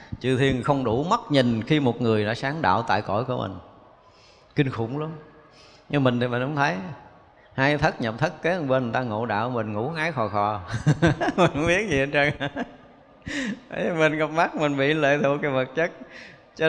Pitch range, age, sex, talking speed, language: 130-170 Hz, 20-39, male, 205 wpm, Vietnamese